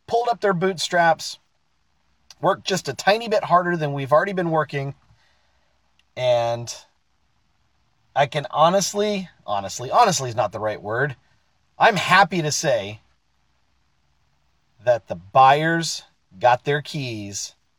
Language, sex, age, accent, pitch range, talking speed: English, male, 40-59, American, 110-170 Hz, 120 wpm